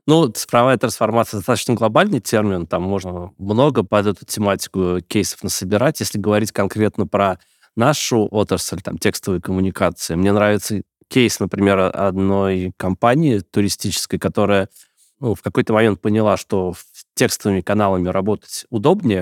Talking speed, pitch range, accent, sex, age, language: 130 wpm, 95-110 Hz, native, male, 20-39, Russian